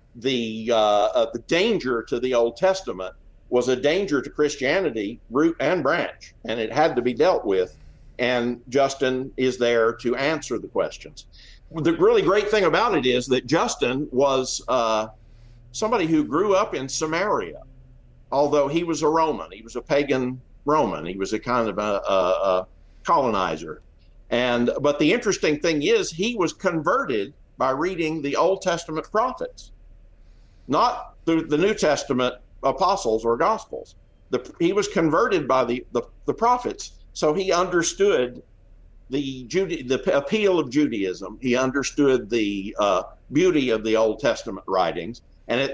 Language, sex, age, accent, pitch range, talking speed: English, male, 50-69, American, 115-165 Hz, 155 wpm